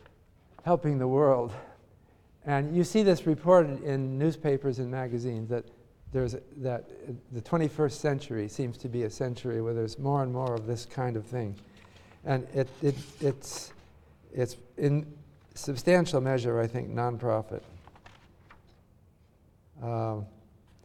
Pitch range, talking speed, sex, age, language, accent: 110-140 Hz, 130 wpm, male, 50-69, English, American